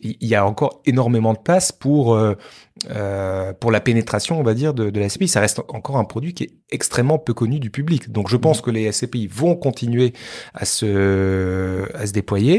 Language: French